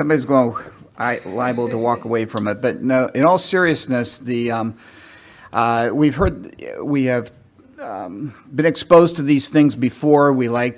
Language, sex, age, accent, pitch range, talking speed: English, male, 50-69, American, 115-145 Hz, 165 wpm